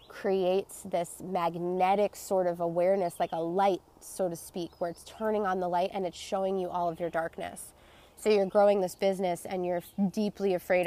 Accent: American